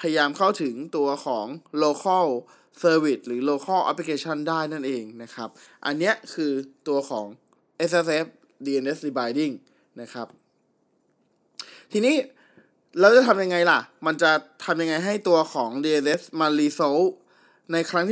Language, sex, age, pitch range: Thai, male, 20-39, 145-195 Hz